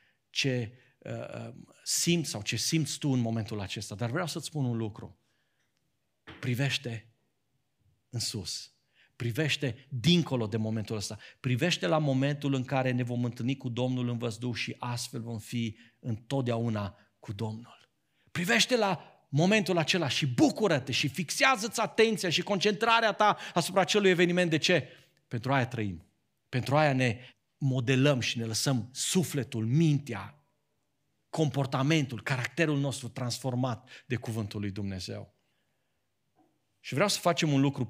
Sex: male